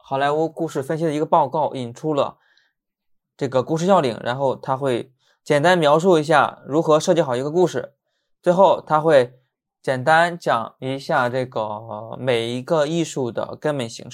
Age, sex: 20-39, male